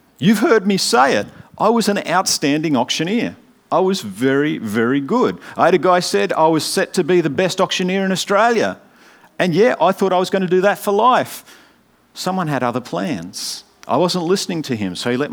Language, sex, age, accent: English, male, 50-69, Australian